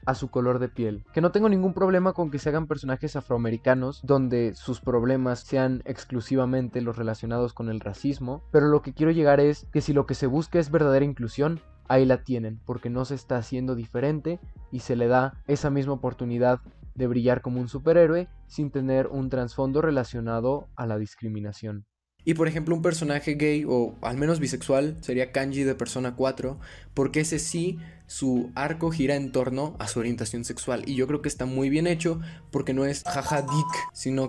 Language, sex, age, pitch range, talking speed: Spanish, male, 20-39, 125-150 Hz, 195 wpm